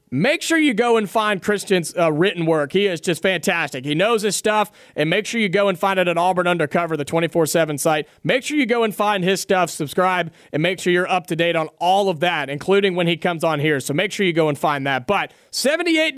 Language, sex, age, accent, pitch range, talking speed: English, male, 30-49, American, 180-235 Hz, 250 wpm